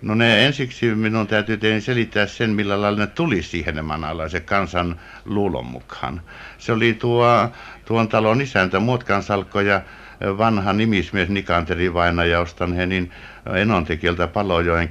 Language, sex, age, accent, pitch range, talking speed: Finnish, male, 60-79, native, 90-110 Hz, 135 wpm